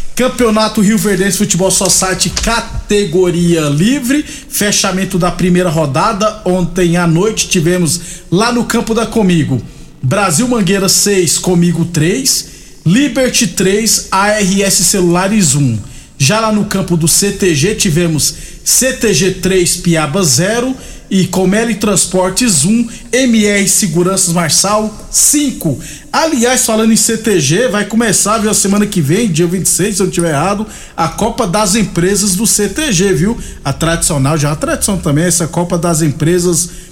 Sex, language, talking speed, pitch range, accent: male, Portuguese, 140 wpm, 175-215 Hz, Brazilian